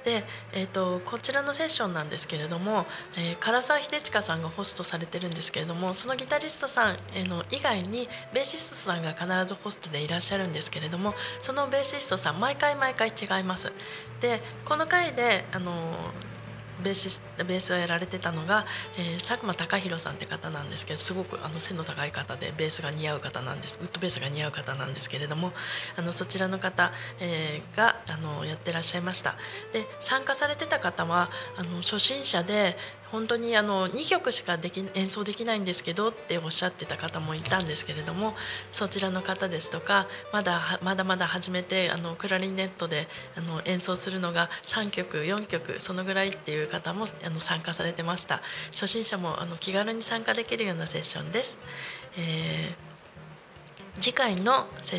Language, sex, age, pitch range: Japanese, female, 20-39, 165-215 Hz